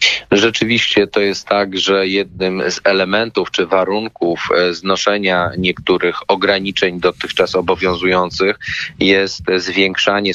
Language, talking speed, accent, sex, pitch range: Polish, 100 wpm, native, male, 90-100 Hz